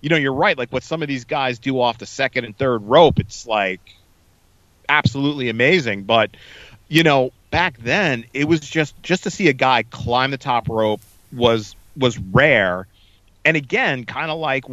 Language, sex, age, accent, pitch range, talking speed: English, male, 40-59, American, 105-140 Hz, 185 wpm